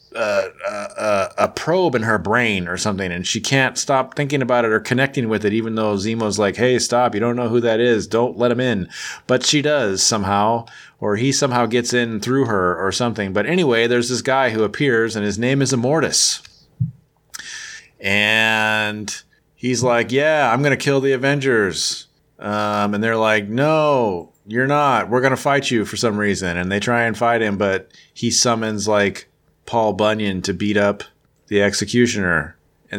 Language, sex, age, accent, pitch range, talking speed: English, male, 30-49, American, 105-135 Hz, 190 wpm